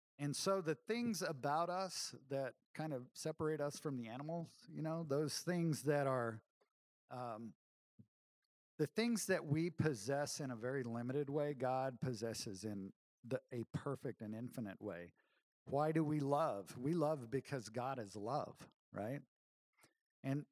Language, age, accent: English, 50-69, American